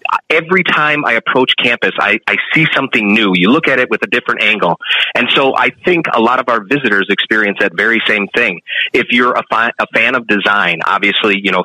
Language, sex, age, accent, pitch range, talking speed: English, male, 30-49, American, 105-135 Hz, 215 wpm